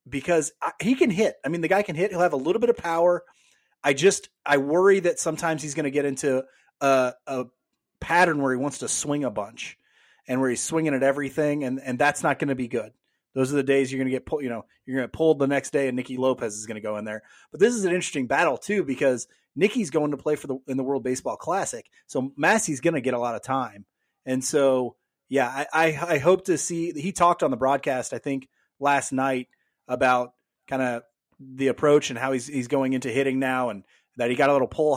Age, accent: 30-49, American